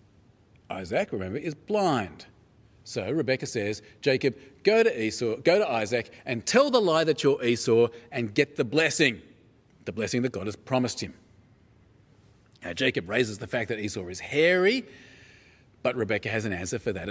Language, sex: English, male